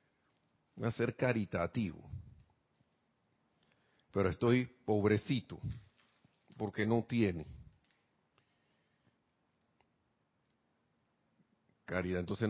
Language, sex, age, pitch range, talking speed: Spanish, male, 50-69, 100-135 Hz, 60 wpm